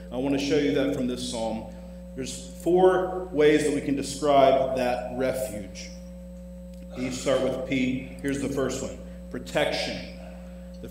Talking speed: 155 wpm